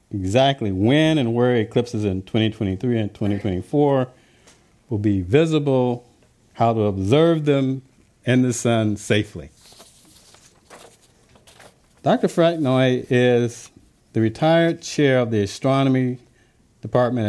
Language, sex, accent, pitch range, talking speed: English, male, American, 105-135 Hz, 105 wpm